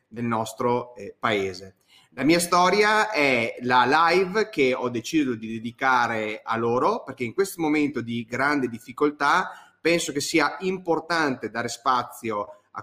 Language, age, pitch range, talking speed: Italian, 30-49, 120-155 Hz, 145 wpm